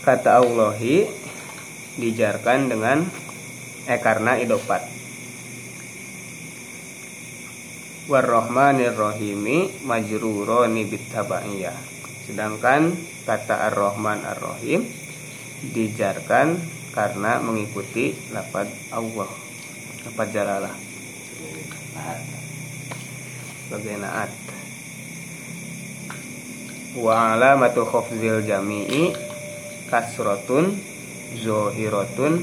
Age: 20-39